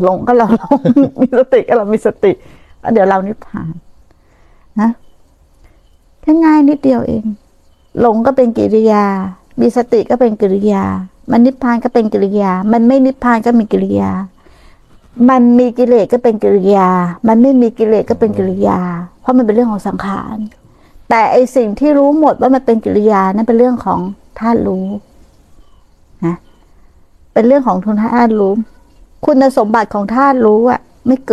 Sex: female